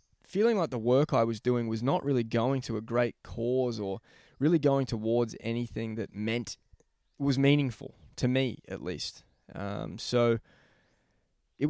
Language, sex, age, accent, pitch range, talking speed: English, male, 20-39, Australian, 115-130 Hz, 160 wpm